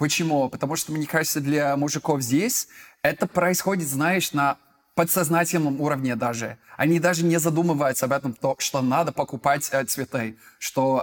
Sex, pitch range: male, 135-175 Hz